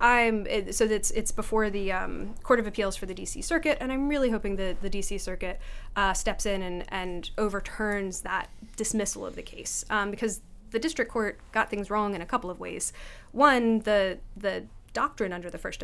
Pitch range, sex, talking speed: 185-220 Hz, female, 205 wpm